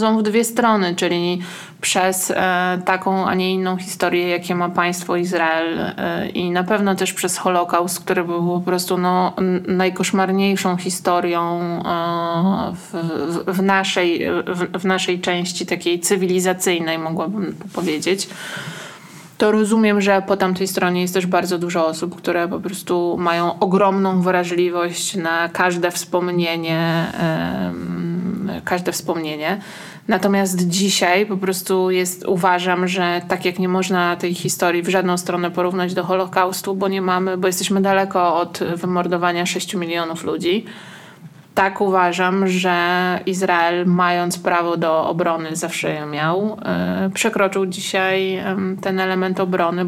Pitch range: 175-190 Hz